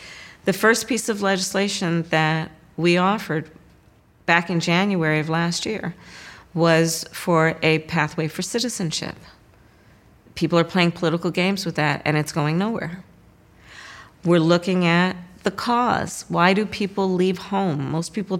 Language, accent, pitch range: English, American, 160-190 Hz